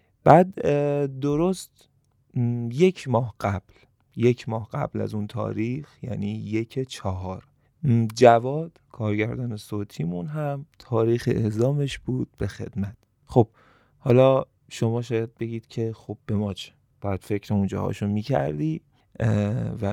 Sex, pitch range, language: male, 105-130 Hz, Persian